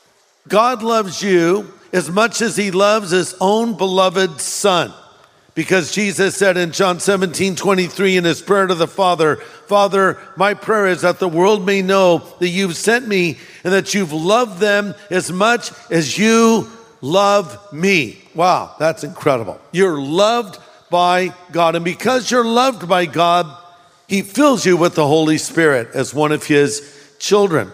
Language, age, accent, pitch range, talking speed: English, 50-69, American, 165-205 Hz, 160 wpm